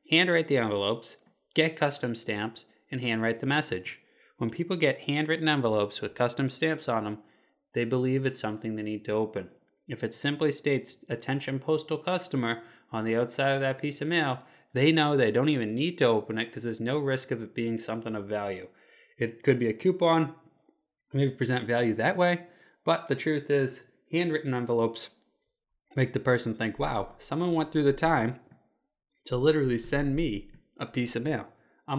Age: 20-39